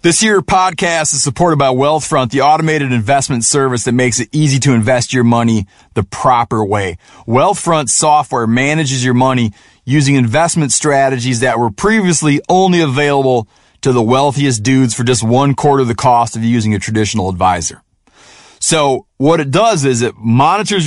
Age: 30-49